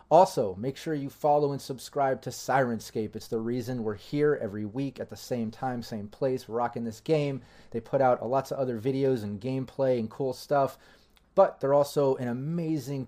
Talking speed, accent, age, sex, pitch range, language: 195 wpm, American, 30-49, male, 115-135 Hz, English